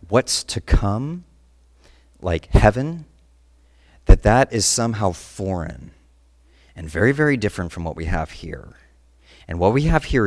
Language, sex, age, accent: English, male, 40-59, American